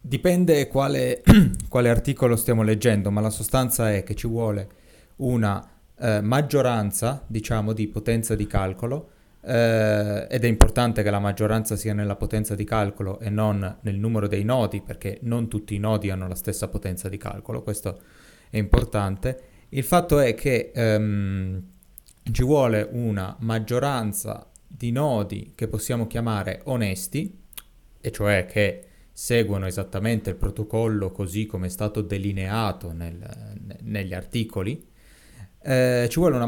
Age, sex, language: 30-49, male, Italian